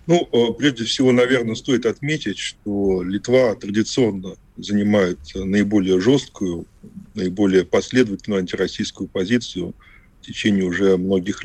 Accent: native